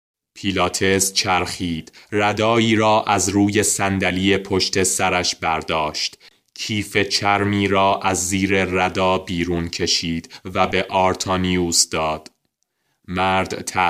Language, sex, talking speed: Persian, male, 100 wpm